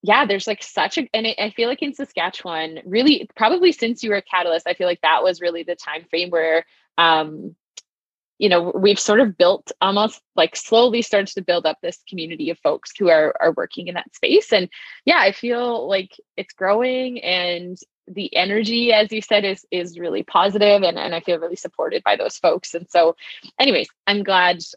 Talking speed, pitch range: 205 wpm, 170-230 Hz